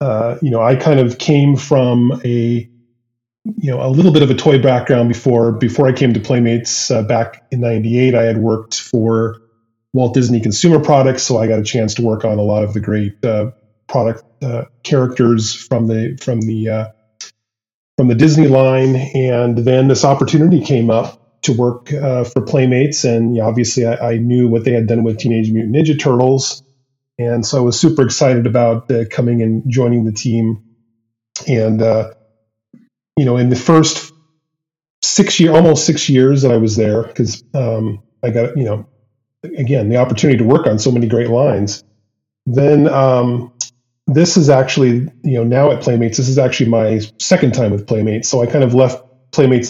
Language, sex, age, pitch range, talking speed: English, male, 30-49, 115-135 Hz, 190 wpm